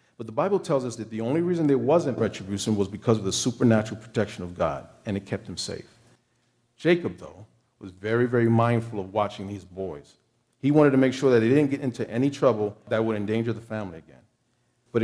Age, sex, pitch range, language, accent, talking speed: 50-69, male, 105-130 Hz, English, American, 215 wpm